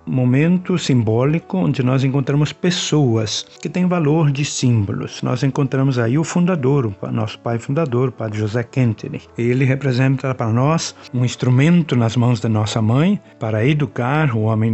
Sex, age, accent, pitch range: male, 60-79, Brazilian, 120-155 Hz